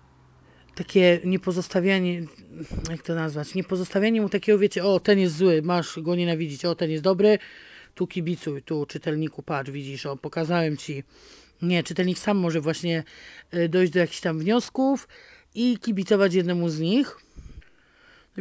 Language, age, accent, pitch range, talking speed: Polish, 40-59, native, 170-205 Hz, 155 wpm